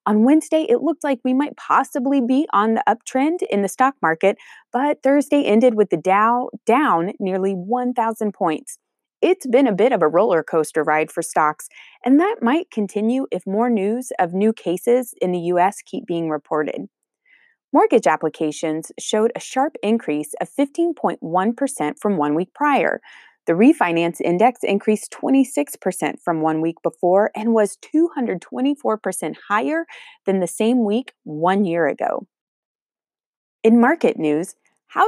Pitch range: 175-275 Hz